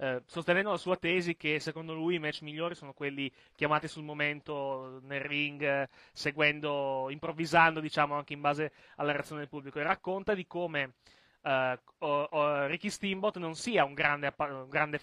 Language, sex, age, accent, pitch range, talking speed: Italian, male, 30-49, native, 140-170 Hz, 160 wpm